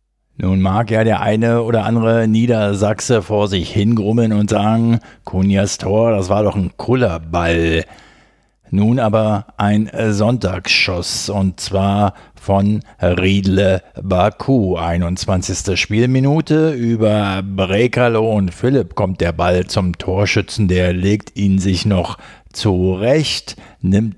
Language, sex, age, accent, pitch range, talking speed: German, male, 50-69, German, 95-120 Hz, 115 wpm